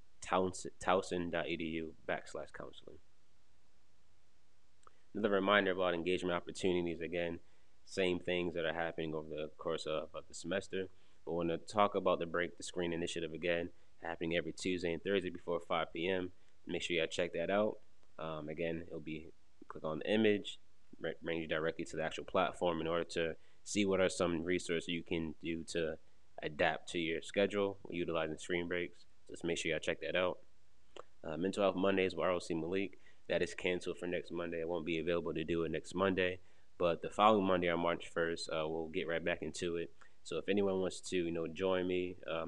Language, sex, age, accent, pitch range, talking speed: English, male, 20-39, American, 80-95 Hz, 190 wpm